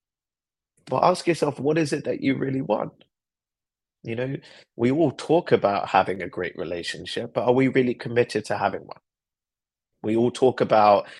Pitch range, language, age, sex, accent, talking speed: 105-125 Hz, English, 20-39, male, British, 170 wpm